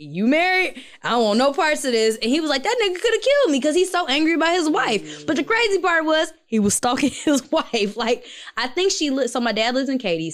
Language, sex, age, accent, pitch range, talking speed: English, female, 10-29, American, 185-300 Hz, 275 wpm